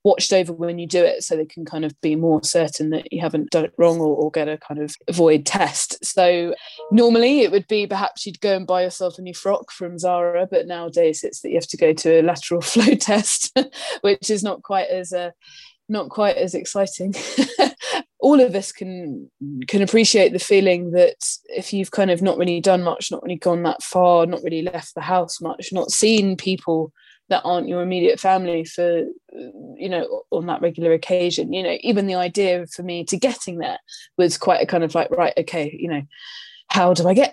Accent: British